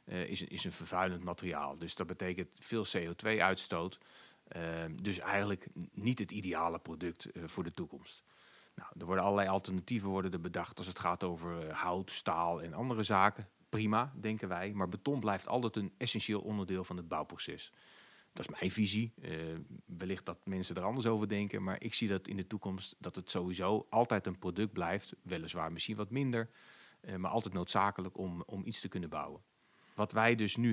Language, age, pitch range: English, 40-59, 90-115 Hz